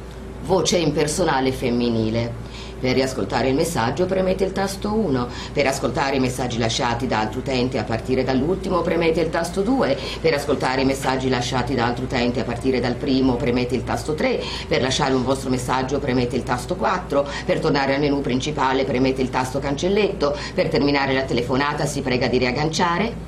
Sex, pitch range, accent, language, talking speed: female, 125-170 Hz, native, Italian, 175 wpm